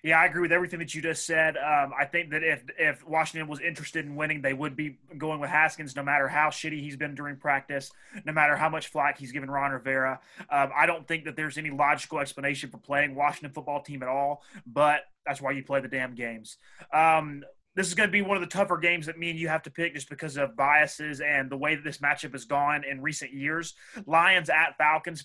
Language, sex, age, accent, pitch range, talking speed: English, male, 20-39, American, 140-160 Hz, 245 wpm